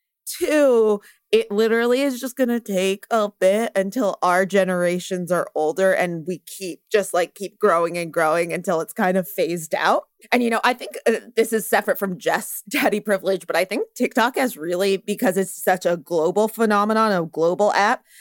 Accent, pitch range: American, 195-245 Hz